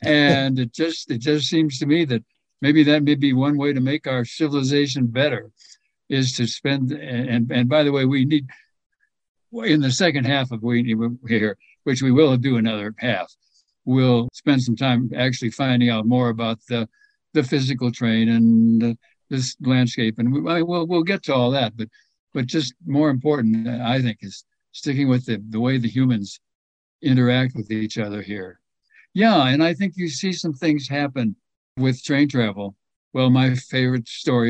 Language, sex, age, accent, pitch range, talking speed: English, male, 60-79, American, 120-140 Hz, 185 wpm